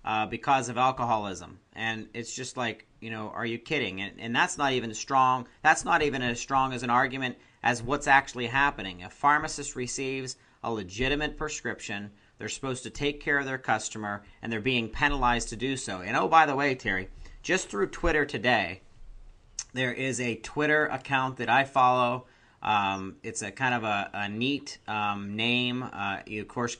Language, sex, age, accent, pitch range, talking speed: English, male, 40-59, American, 110-135 Hz, 190 wpm